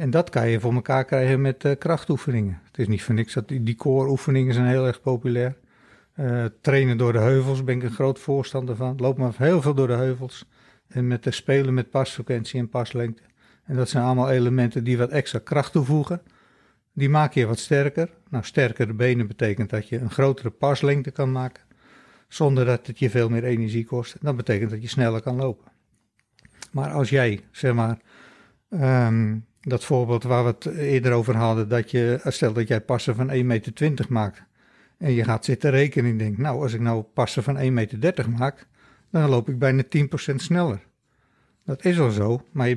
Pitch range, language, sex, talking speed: 120-135 Hz, Dutch, male, 195 wpm